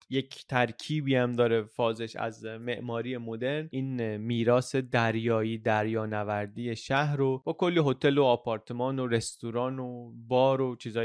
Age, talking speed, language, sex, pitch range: 20-39, 135 wpm, Persian, male, 115-135 Hz